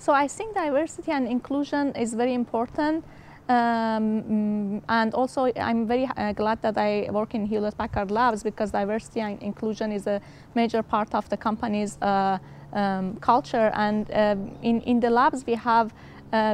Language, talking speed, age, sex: English, 165 wpm, 20-39, female